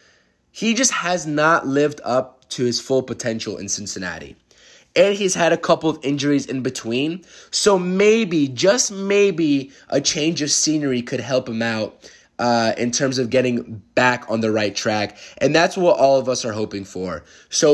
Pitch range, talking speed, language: 120-190 Hz, 180 wpm, English